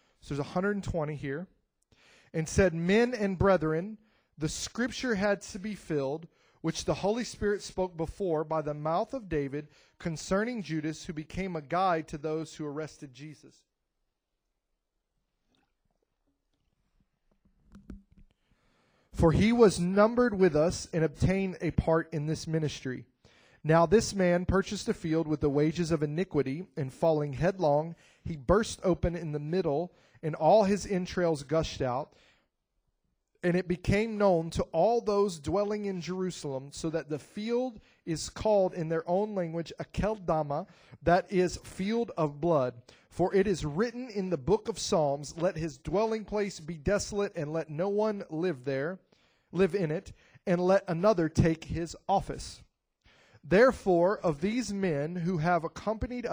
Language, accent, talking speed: English, American, 150 wpm